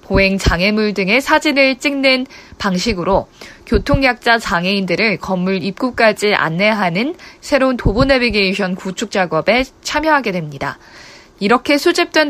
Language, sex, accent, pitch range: Korean, female, native, 195-255 Hz